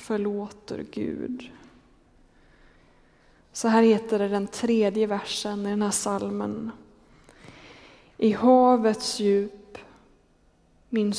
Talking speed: 90 wpm